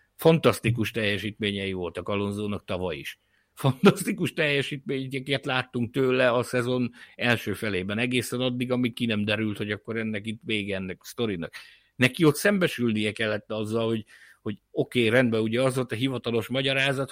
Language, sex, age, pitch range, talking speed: Hungarian, male, 60-79, 105-130 Hz, 155 wpm